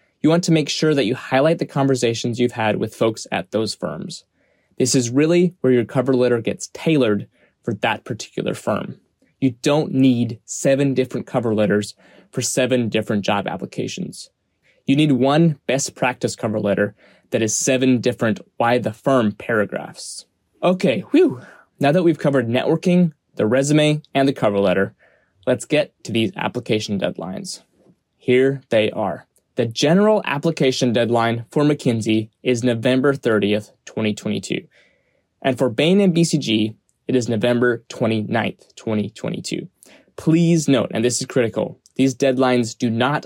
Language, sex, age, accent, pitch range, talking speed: English, male, 20-39, American, 115-150 Hz, 155 wpm